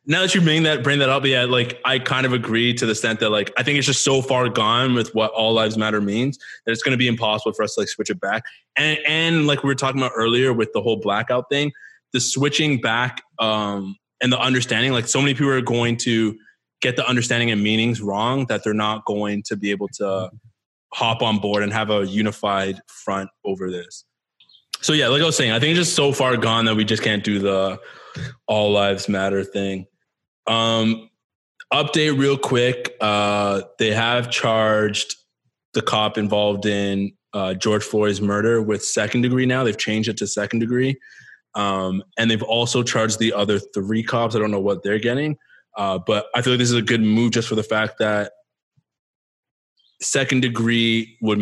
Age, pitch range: 20-39, 105-125 Hz